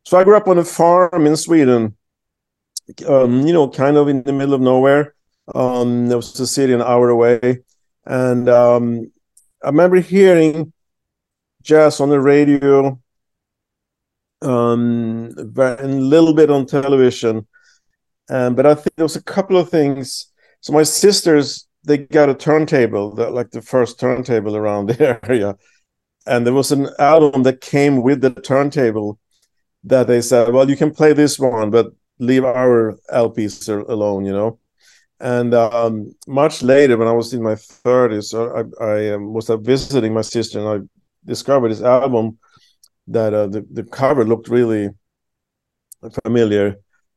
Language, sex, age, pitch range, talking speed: English, male, 50-69, 115-140 Hz, 155 wpm